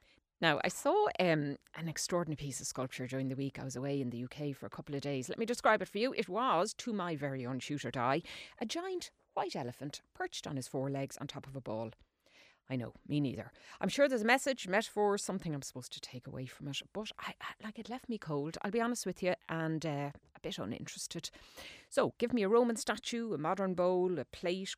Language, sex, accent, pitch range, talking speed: English, female, Irish, 135-205 Hz, 235 wpm